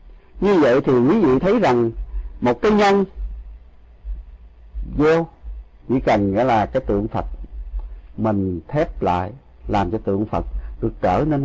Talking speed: 145 wpm